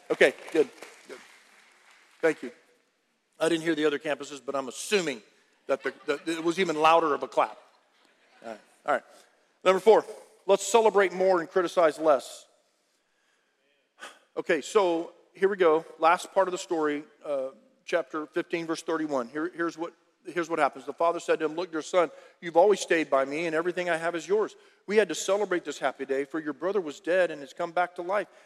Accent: American